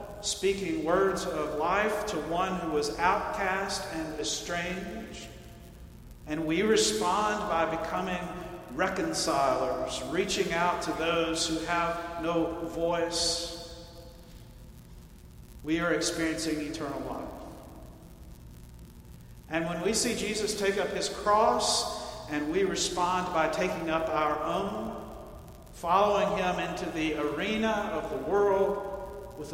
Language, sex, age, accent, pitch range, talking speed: English, male, 50-69, American, 155-195 Hz, 115 wpm